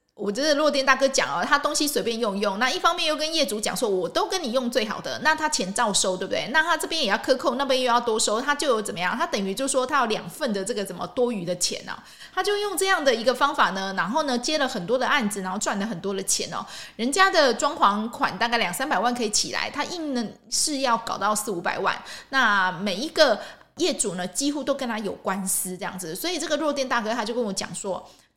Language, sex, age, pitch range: Chinese, female, 20-39, 205-280 Hz